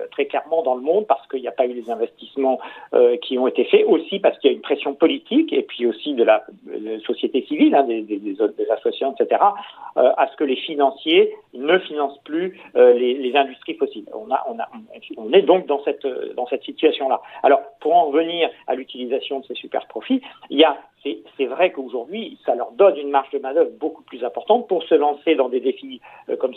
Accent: French